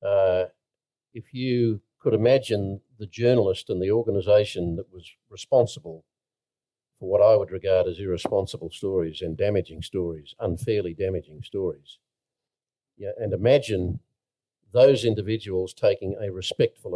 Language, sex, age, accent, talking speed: English, male, 50-69, Australian, 125 wpm